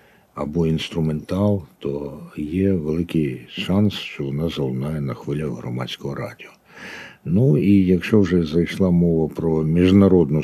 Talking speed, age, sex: 120 wpm, 60-79, male